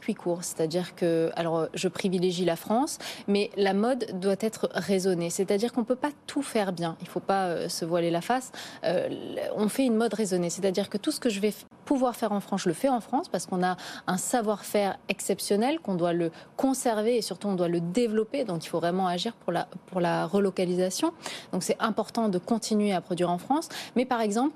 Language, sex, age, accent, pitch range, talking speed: French, female, 20-39, French, 175-220 Hz, 225 wpm